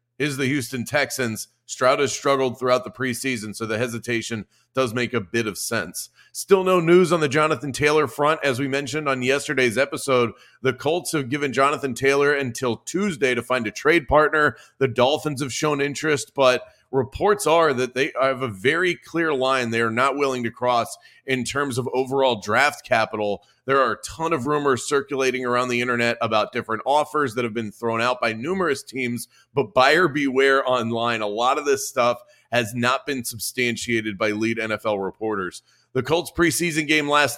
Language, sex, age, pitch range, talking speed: English, male, 30-49, 115-145 Hz, 185 wpm